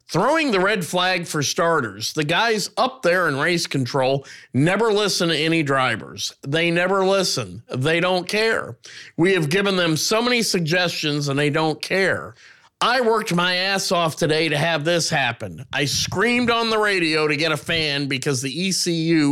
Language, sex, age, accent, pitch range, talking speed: English, male, 50-69, American, 145-185 Hz, 175 wpm